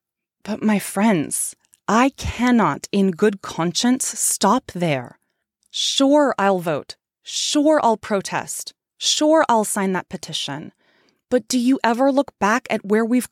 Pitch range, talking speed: 175-245 Hz, 135 wpm